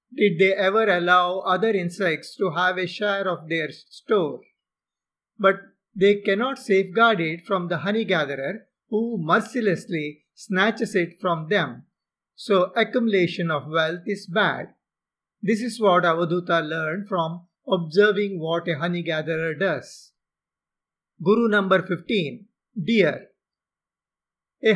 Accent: Indian